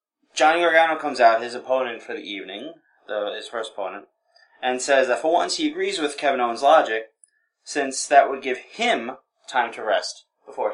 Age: 20-39